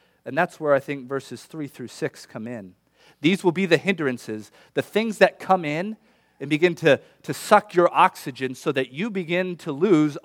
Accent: American